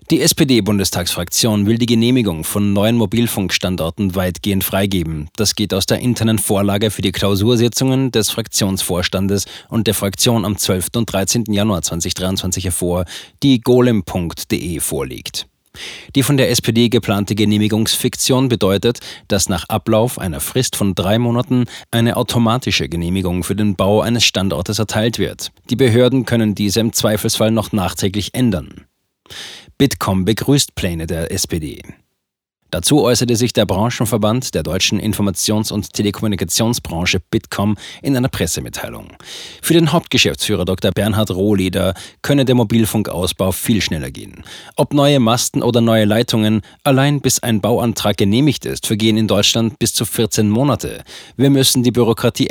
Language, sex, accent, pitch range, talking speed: German, male, German, 95-120 Hz, 140 wpm